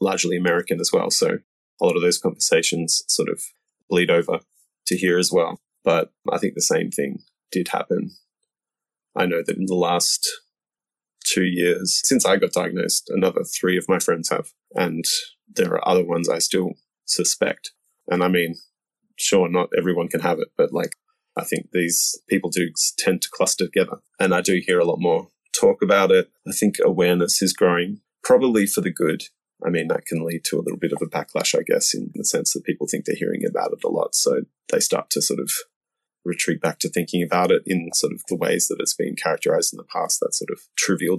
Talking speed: 210 wpm